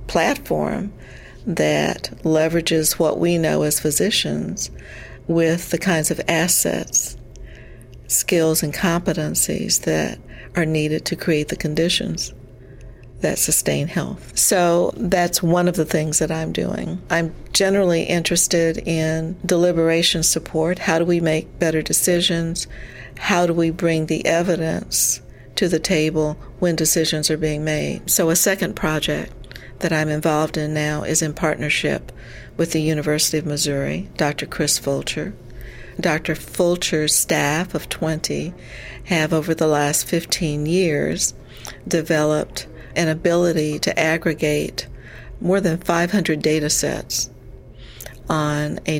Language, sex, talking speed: English, female, 125 wpm